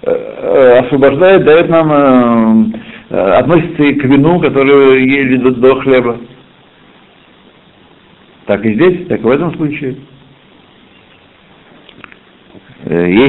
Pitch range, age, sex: 115-175 Hz, 60-79, male